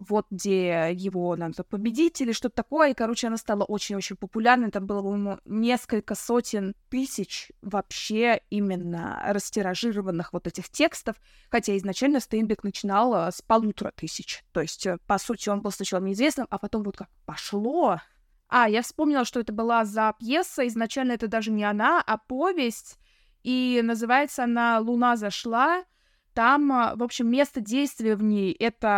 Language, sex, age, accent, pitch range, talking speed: Russian, female, 20-39, native, 205-250 Hz, 150 wpm